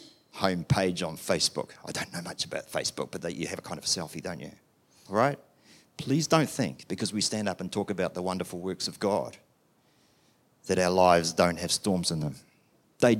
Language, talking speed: English, 210 wpm